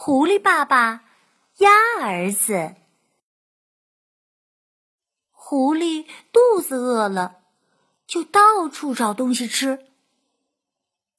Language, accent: Chinese, native